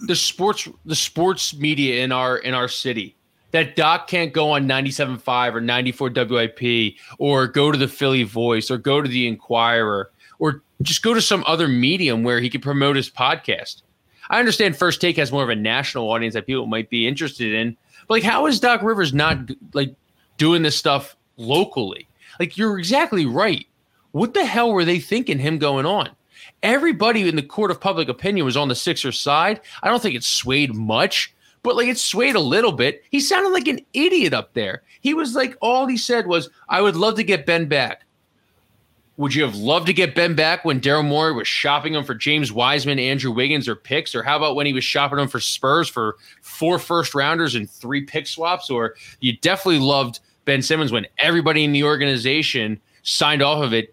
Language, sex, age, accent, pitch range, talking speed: English, male, 20-39, American, 125-175 Hz, 205 wpm